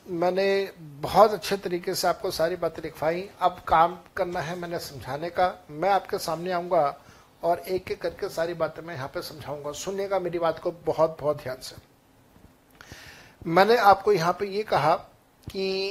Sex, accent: male, native